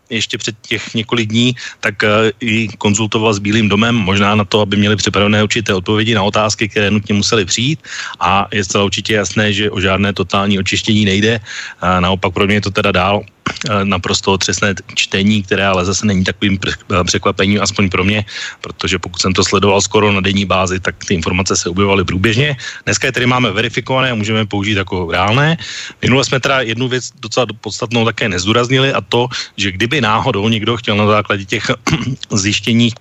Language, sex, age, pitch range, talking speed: Slovak, male, 30-49, 100-115 Hz, 185 wpm